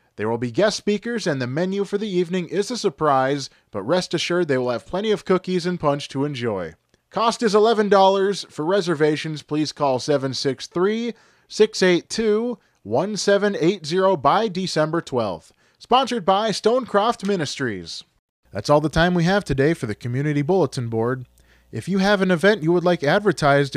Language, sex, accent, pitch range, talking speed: English, male, American, 135-195 Hz, 160 wpm